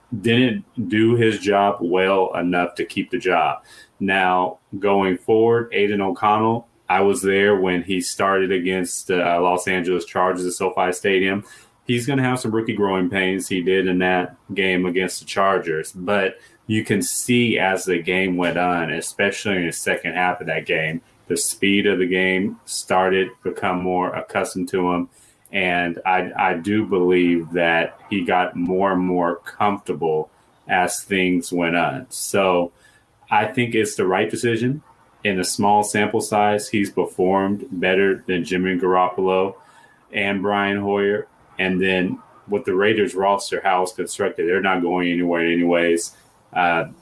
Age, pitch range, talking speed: 30-49, 90-100 Hz, 160 wpm